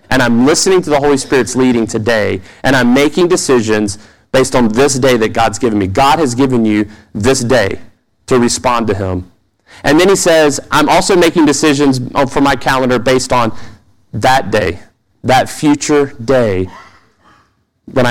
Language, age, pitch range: English, 30-49, 110-140 Hz